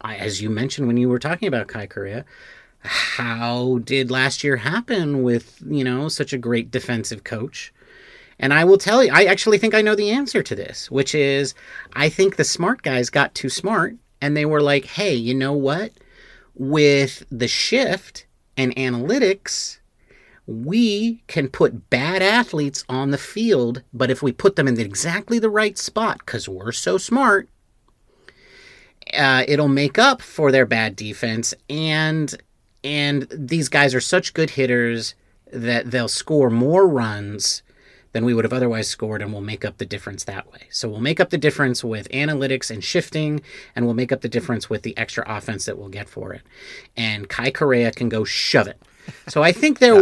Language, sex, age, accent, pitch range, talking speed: English, male, 40-59, American, 120-175 Hz, 185 wpm